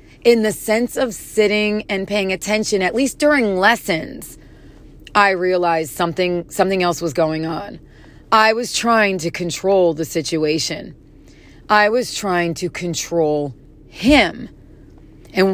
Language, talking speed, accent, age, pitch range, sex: English, 130 wpm, American, 30-49, 175-225 Hz, female